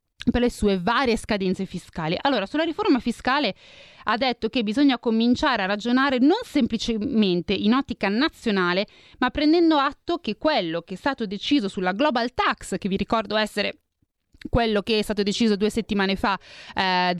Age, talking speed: 20-39, 165 wpm